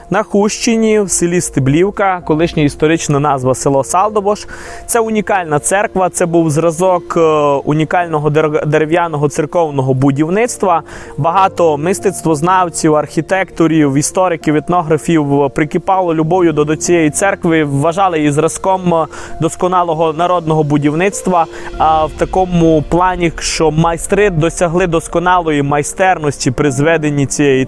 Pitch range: 160-190 Hz